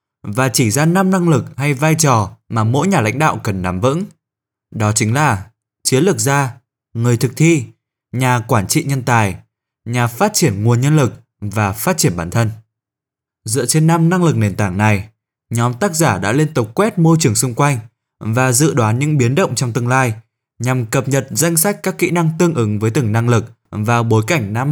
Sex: male